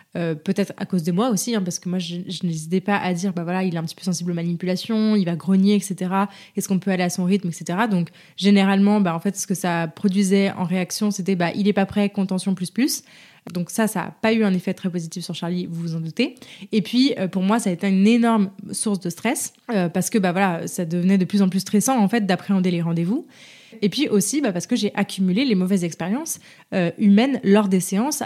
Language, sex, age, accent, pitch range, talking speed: French, female, 20-39, French, 180-215 Hz, 255 wpm